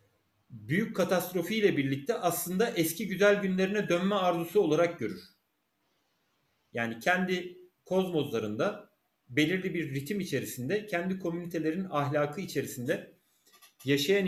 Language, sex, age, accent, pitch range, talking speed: Turkish, male, 40-59, native, 150-190 Hz, 100 wpm